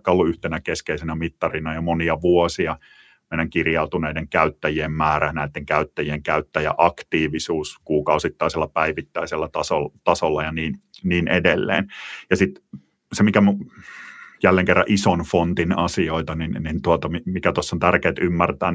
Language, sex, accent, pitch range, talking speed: English, male, Finnish, 80-90 Hz, 125 wpm